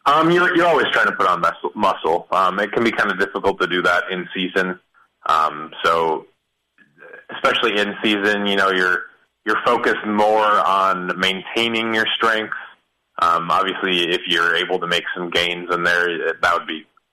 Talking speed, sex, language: 180 wpm, male, English